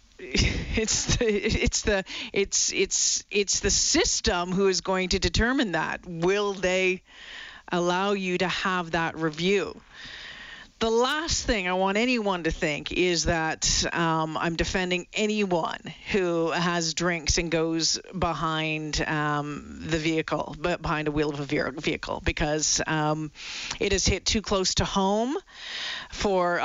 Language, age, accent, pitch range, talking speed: English, 40-59, American, 160-205 Hz, 130 wpm